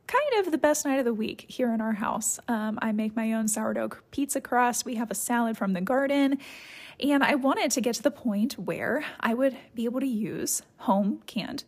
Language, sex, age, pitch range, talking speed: English, female, 20-39, 235-280 Hz, 225 wpm